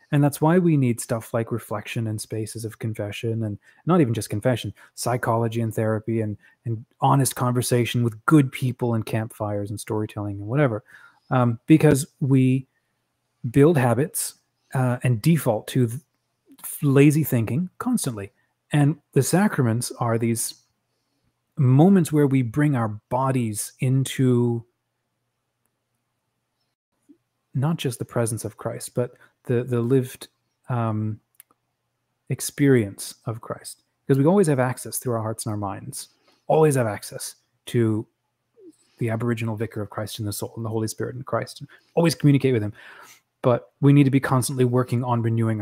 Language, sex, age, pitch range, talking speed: English, male, 30-49, 115-140 Hz, 150 wpm